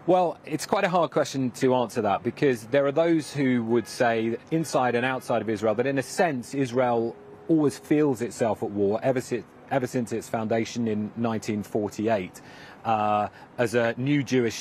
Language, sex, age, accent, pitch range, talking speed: English, male, 30-49, British, 105-125 Hz, 175 wpm